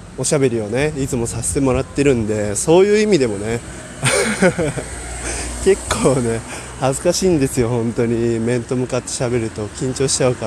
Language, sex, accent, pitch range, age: Japanese, male, native, 115-160 Hz, 20-39